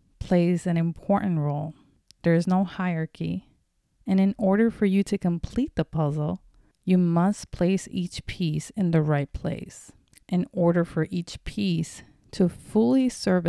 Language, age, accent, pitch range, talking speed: English, 30-49, American, 160-195 Hz, 150 wpm